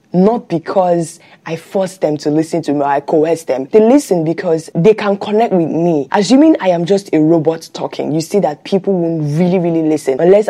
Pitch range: 155-195 Hz